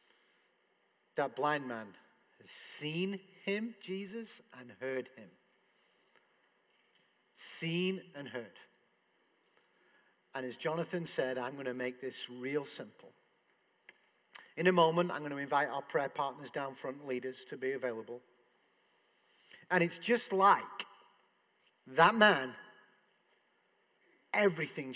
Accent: British